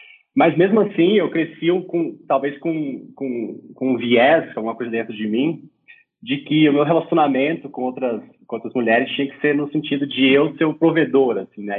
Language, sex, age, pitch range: Portuguese, male, 20-39, 120-165 Hz